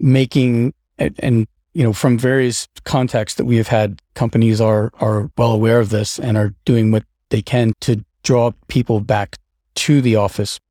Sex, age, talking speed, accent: male, 40-59, 180 wpm, American